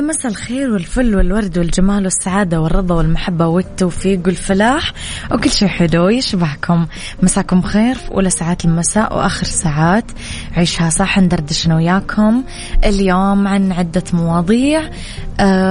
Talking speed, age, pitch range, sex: 120 wpm, 20-39, 175-200 Hz, female